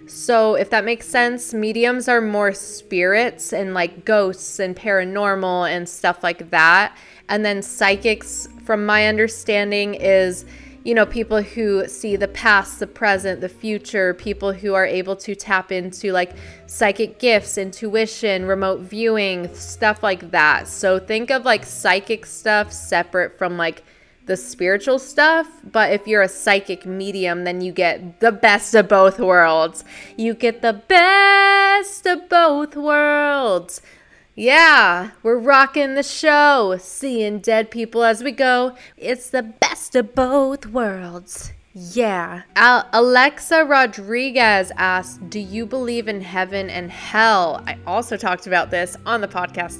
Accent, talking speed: American, 145 wpm